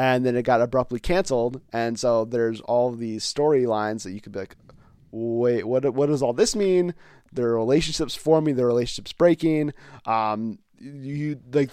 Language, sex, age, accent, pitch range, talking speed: English, male, 30-49, American, 120-145 Hz, 170 wpm